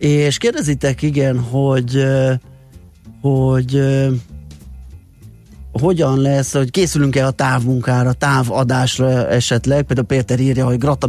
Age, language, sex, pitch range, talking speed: 30-49, Hungarian, male, 125-140 Hz, 115 wpm